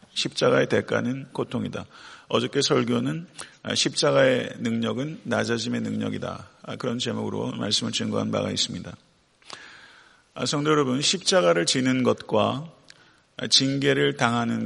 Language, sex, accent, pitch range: Korean, male, native, 115-135 Hz